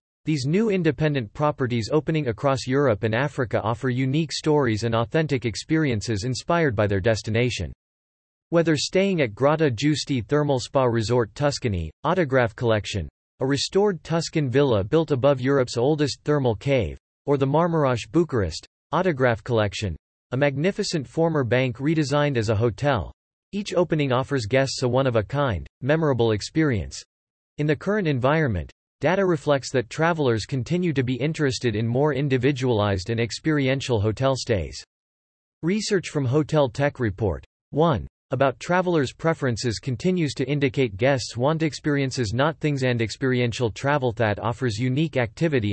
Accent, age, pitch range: American, 40-59, 115-150 Hz